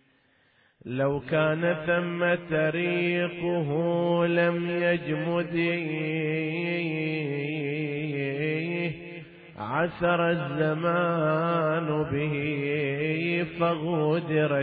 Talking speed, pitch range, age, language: 40 wpm, 130-155 Hz, 30-49, Arabic